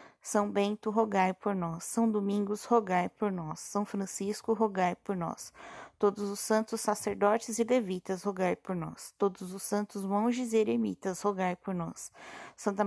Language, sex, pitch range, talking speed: Portuguese, female, 190-220 Hz, 160 wpm